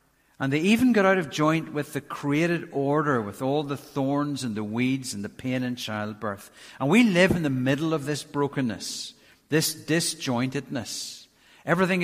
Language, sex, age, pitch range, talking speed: English, male, 60-79, 125-165 Hz, 175 wpm